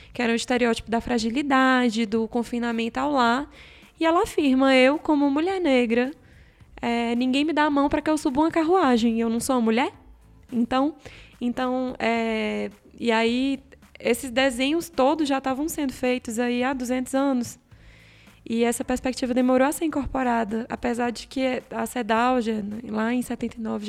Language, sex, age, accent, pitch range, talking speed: Portuguese, female, 20-39, Brazilian, 240-275 Hz, 165 wpm